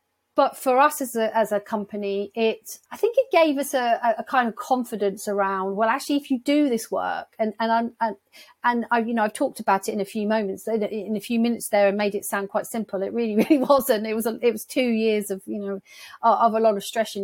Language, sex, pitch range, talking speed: English, female, 195-230 Hz, 260 wpm